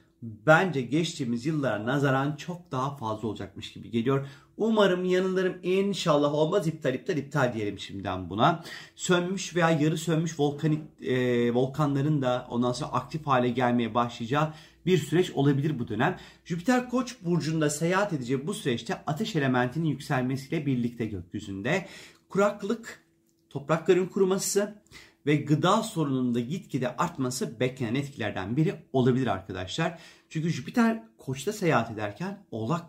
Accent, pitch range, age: native, 120-165 Hz, 40-59